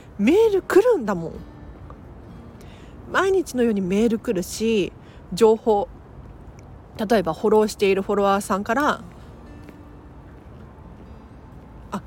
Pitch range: 205-295 Hz